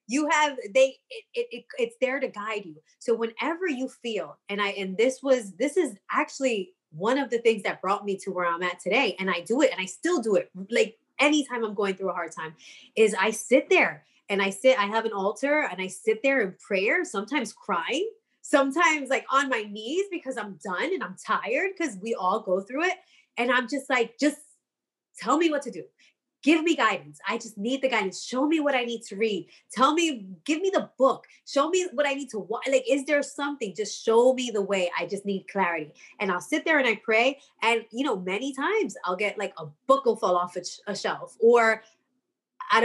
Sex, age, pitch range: female, 20-39, 200-290 Hz